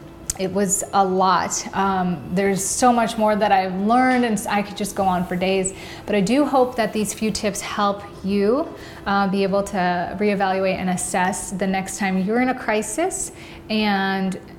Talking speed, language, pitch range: 185 wpm, English, 185-215 Hz